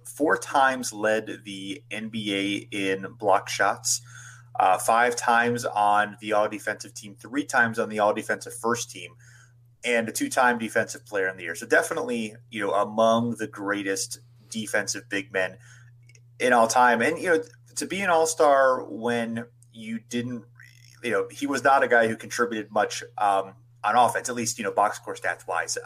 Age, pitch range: 30-49, 100-120 Hz